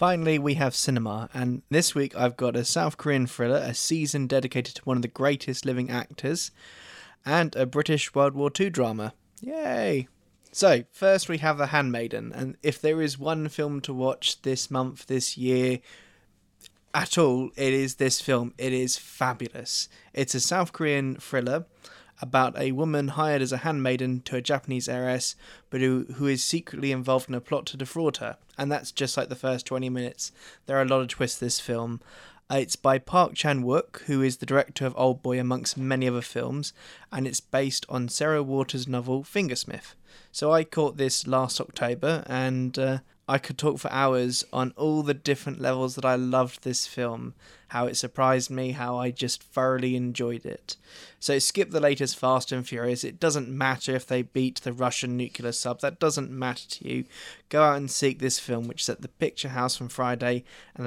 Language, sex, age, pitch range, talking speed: English, male, 20-39, 125-145 Hz, 195 wpm